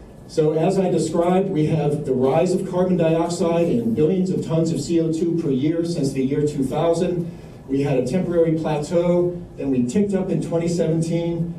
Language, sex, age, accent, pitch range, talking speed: English, male, 50-69, American, 135-175 Hz, 175 wpm